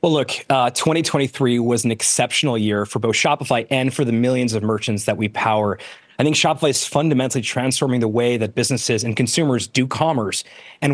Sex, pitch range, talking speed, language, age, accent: male, 130-165 Hz, 190 wpm, English, 30-49, American